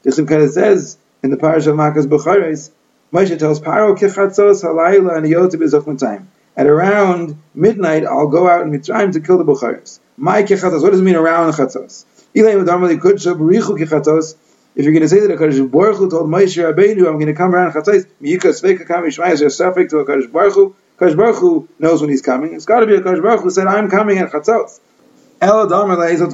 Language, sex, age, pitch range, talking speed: English, male, 30-49, 160-200 Hz, 180 wpm